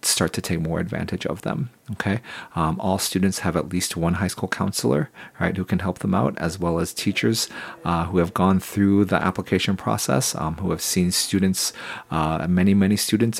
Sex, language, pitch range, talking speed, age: male, English, 85-100 Hz, 200 wpm, 40-59